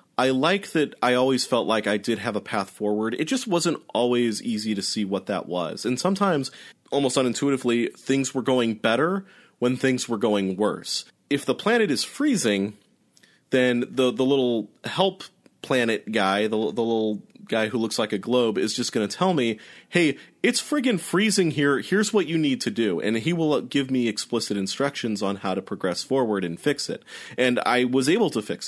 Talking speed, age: 200 wpm, 30-49